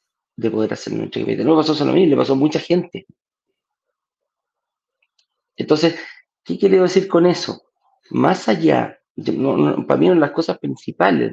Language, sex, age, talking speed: Spanish, male, 40-59, 160 wpm